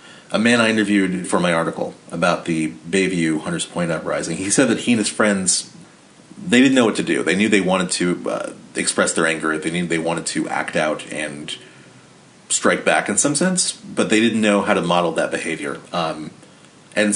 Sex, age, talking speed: male, 30-49, 205 wpm